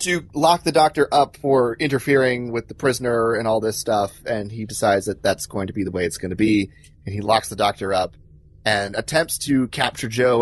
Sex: male